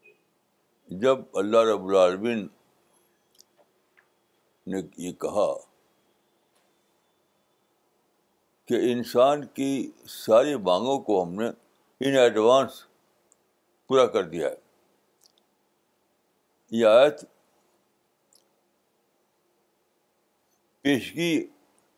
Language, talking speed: Urdu, 65 wpm